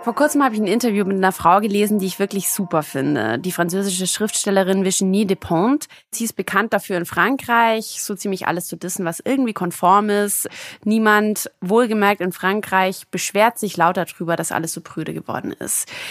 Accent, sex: German, female